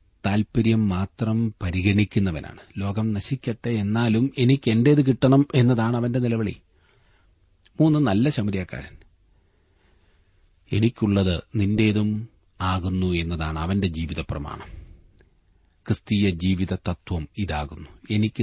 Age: 40-59